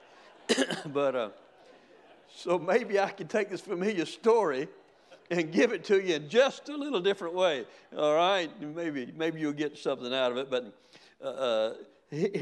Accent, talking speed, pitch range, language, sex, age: American, 160 wpm, 145-200 Hz, English, male, 60-79